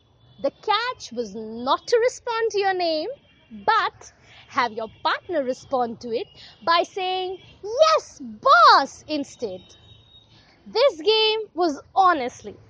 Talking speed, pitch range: 120 wpm, 265-395 Hz